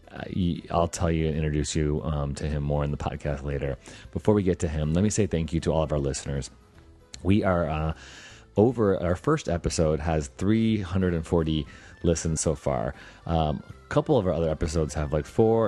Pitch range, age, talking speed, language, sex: 75-90 Hz, 30-49, 195 wpm, English, male